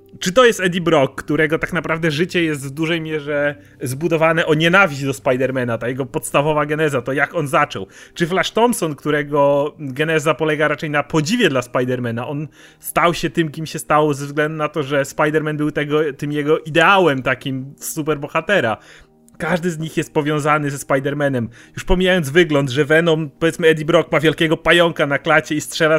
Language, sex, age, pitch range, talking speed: Polish, male, 30-49, 150-180 Hz, 185 wpm